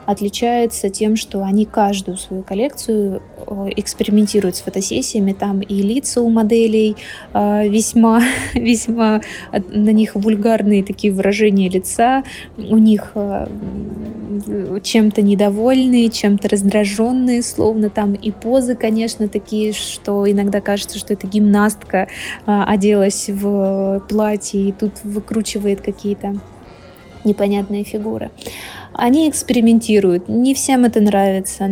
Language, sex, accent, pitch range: Russian, female, native, 200-225 Hz